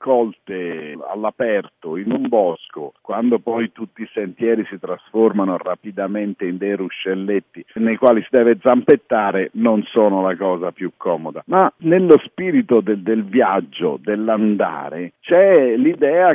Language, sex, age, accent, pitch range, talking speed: Italian, male, 50-69, native, 95-135 Hz, 130 wpm